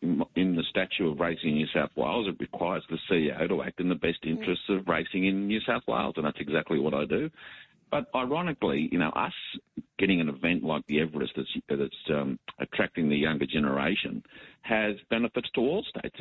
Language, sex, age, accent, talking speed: English, male, 50-69, Australian, 200 wpm